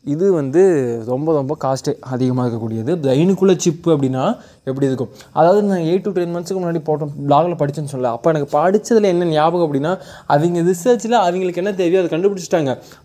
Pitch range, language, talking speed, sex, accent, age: 135-170 Hz, Tamil, 165 wpm, male, native, 20-39